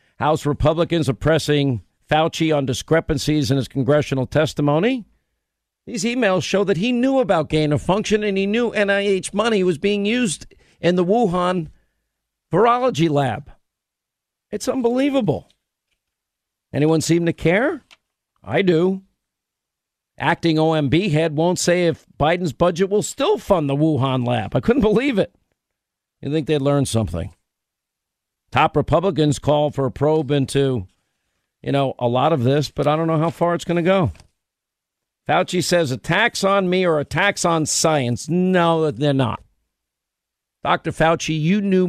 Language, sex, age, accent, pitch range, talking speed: English, male, 50-69, American, 130-175 Hz, 150 wpm